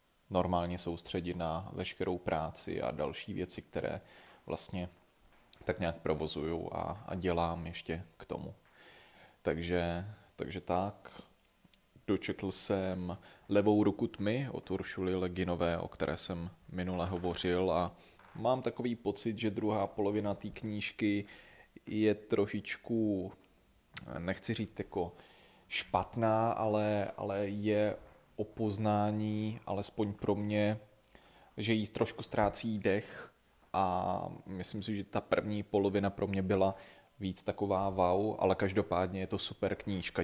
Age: 20-39